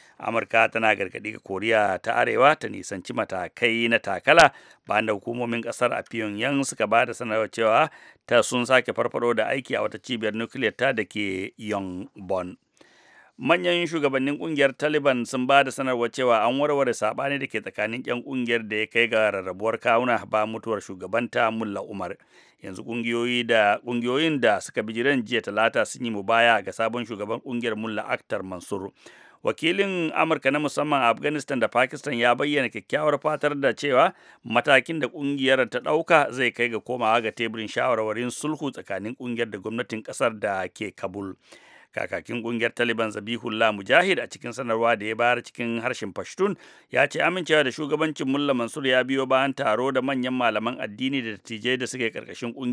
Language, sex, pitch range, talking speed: English, male, 110-135 Hz, 155 wpm